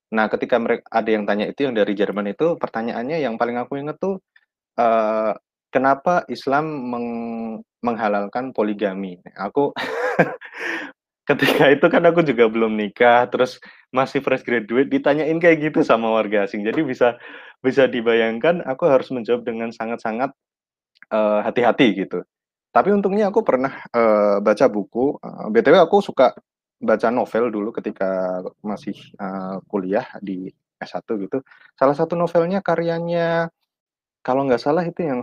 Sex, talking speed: male, 140 wpm